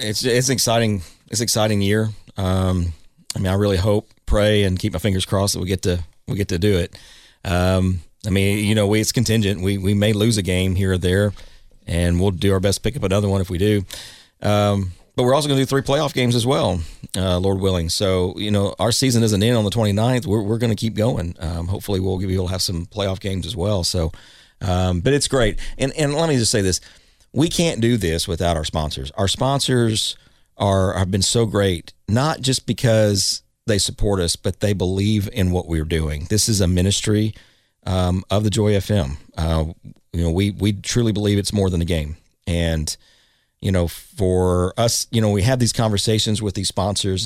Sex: male